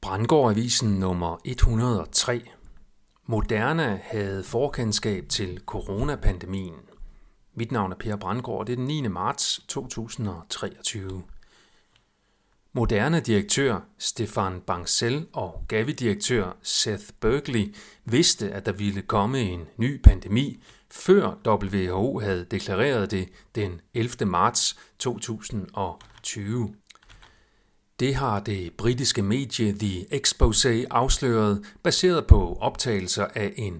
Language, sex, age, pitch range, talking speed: Danish, male, 40-59, 100-125 Hz, 105 wpm